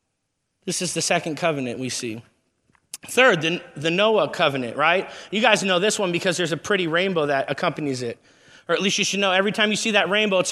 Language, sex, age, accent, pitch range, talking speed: English, male, 30-49, American, 180-230 Hz, 220 wpm